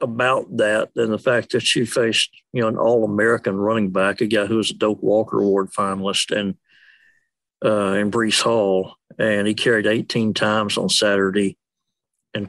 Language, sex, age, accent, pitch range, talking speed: English, male, 60-79, American, 100-115 Hz, 180 wpm